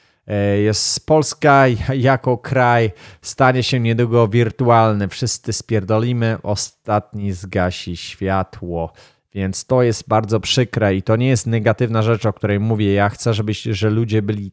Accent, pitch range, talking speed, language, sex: native, 100-115 Hz, 135 wpm, Polish, male